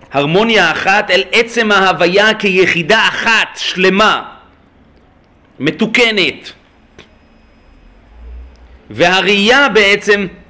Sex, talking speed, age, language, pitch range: male, 65 wpm, 40-59, Hebrew, 160-215 Hz